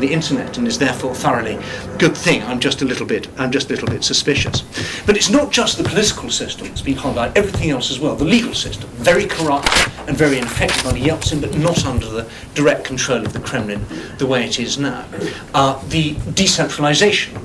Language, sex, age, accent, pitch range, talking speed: English, male, 40-59, British, 115-145 Hz, 210 wpm